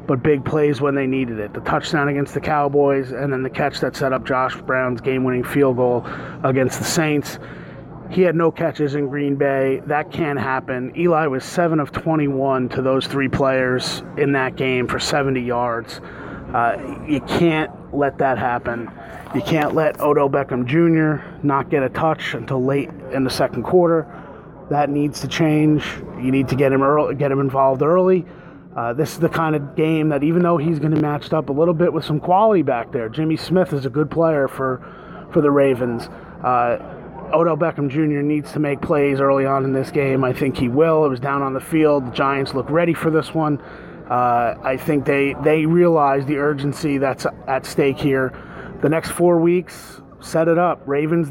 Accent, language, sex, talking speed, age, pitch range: American, English, male, 200 wpm, 30-49, 135-165 Hz